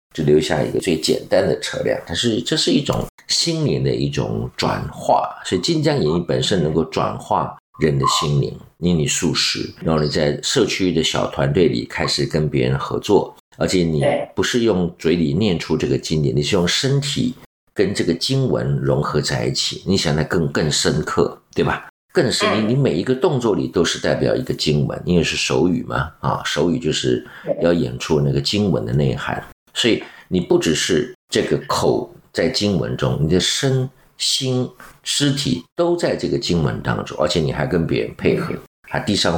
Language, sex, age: Chinese, male, 50-69